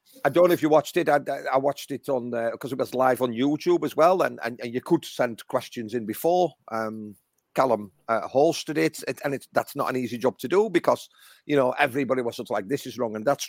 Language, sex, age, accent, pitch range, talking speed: English, male, 40-59, British, 120-155 Hz, 260 wpm